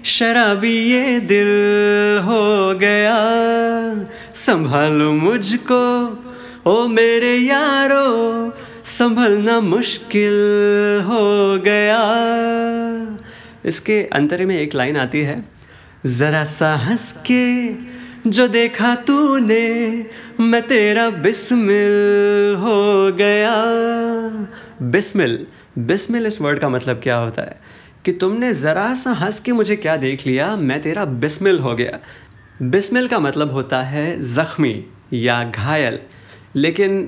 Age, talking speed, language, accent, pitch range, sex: 30-49, 105 wpm, Hindi, native, 145-230 Hz, male